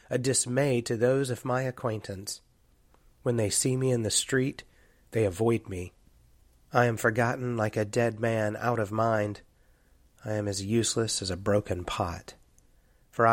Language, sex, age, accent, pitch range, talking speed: English, male, 30-49, American, 100-120 Hz, 160 wpm